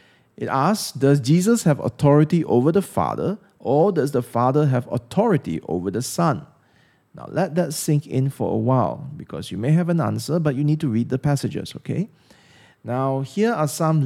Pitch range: 125-165 Hz